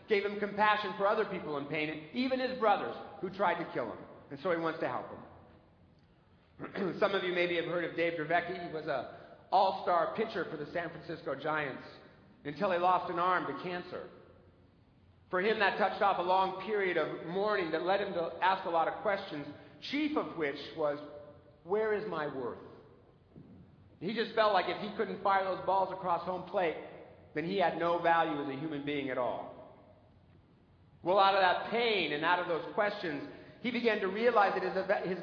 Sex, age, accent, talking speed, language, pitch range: male, 50-69, American, 200 wpm, English, 160-205 Hz